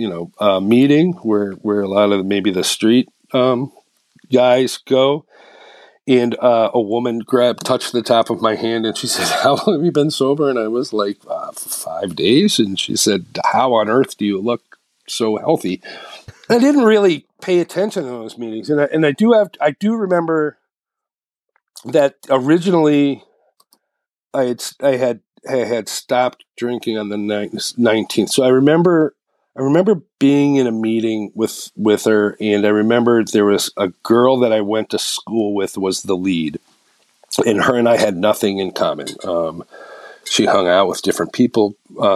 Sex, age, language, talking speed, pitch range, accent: male, 50-69, English, 185 wpm, 105-140 Hz, American